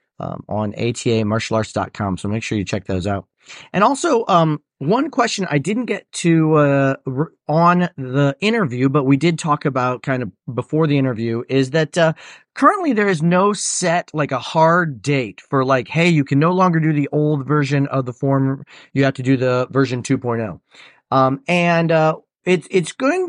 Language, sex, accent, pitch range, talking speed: English, male, American, 125-165 Hz, 190 wpm